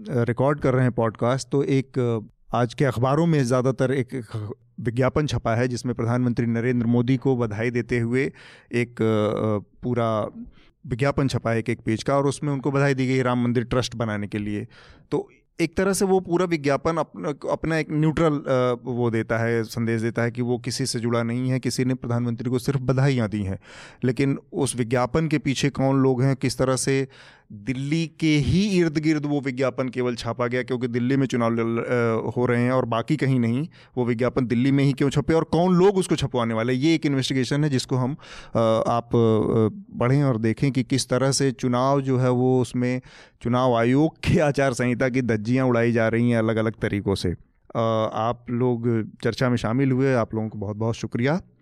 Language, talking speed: Hindi, 195 wpm